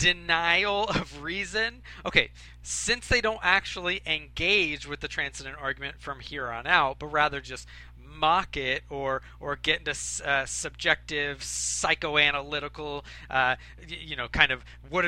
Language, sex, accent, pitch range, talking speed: English, male, American, 140-185 Hz, 140 wpm